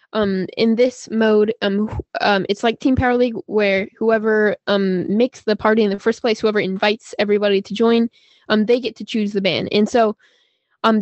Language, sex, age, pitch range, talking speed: English, female, 10-29, 205-245 Hz, 195 wpm